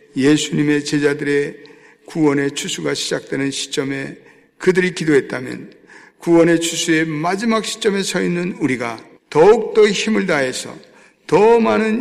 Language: Korean